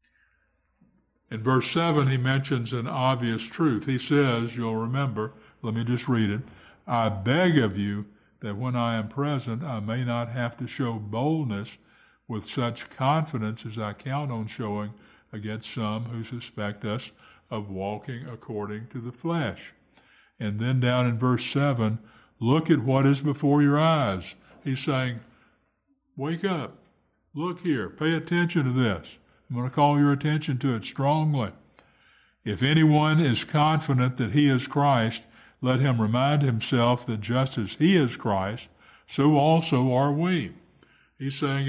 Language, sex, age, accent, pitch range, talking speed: English, male, 60-79, American, 115-145 Hz, 155 wpm